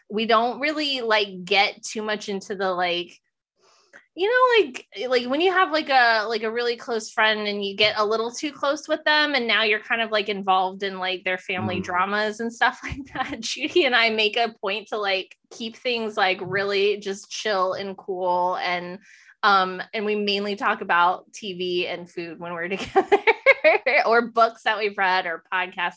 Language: English